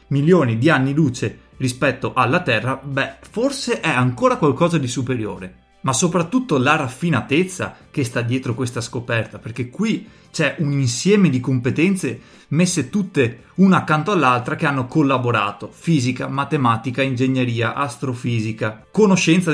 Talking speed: 130 wpm